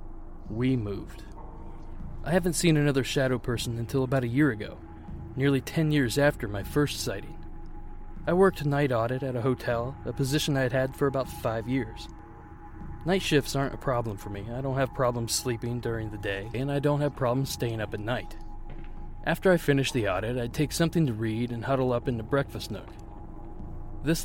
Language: English